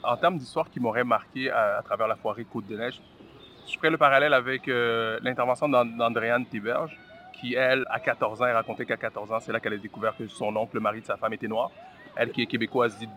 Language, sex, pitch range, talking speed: French, male, 115-135 Hz, 230 wpm